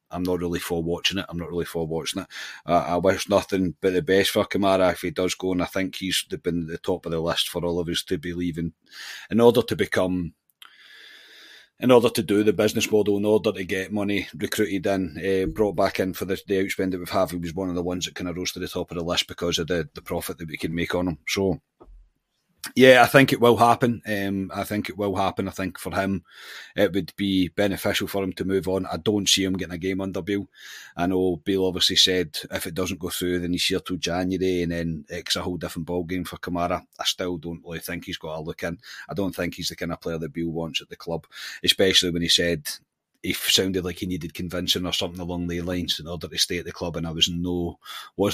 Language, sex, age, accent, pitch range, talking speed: English, male, 30-49, British, 85-95 Hz, 265 wpm